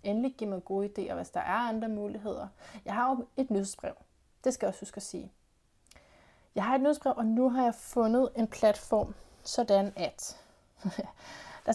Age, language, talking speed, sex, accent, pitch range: 30-49, Danish, 185 wpm, female, native, 195-240 Hz